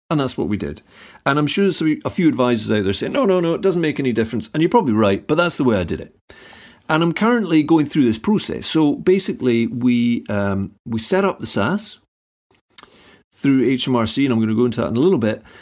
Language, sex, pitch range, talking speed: English, male, 110-170 Hz, 240 wpm